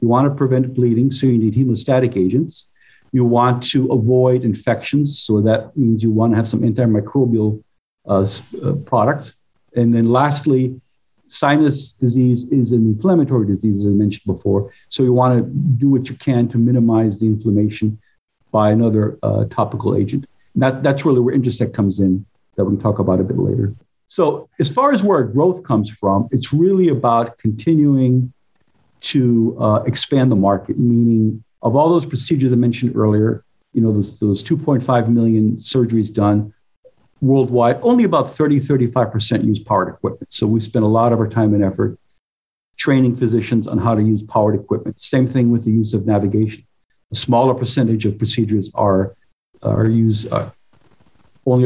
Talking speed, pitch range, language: 165 wpm, 105-130 Hz, English